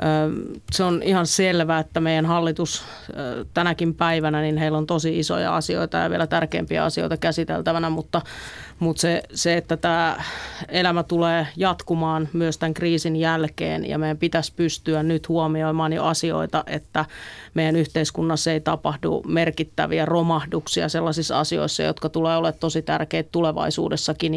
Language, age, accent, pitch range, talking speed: Finnish, 30-49, native, 160-170 Hz, 140 wpm